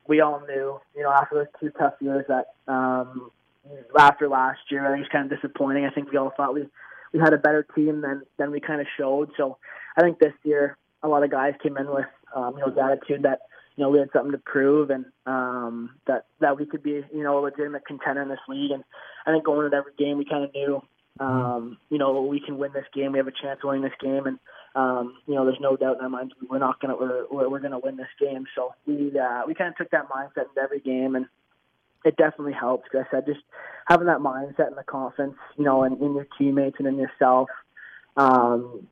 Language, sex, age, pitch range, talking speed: English, male, 20-39, 135-145 Hz, 250 wpm